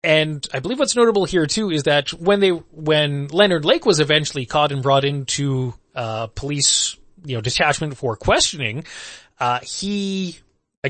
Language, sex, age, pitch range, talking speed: English, male, 20-39, 130-170 Hz, 165 wpm